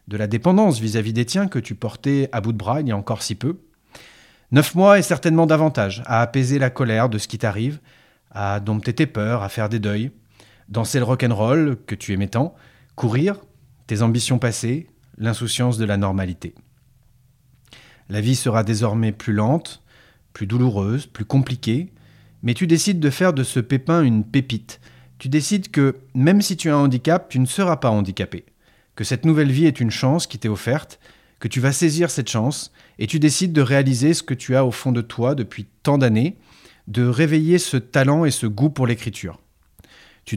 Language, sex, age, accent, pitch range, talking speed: French, male, 30-49, French, 110-145 Hz, 195 wpm